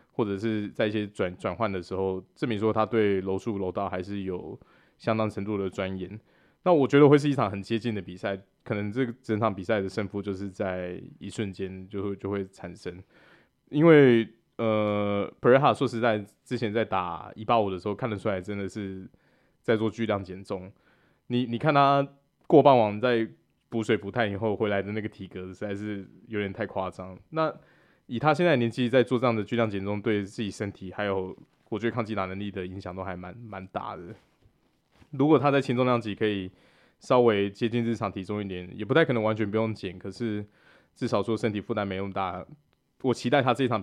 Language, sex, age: Chinese, male, 20-39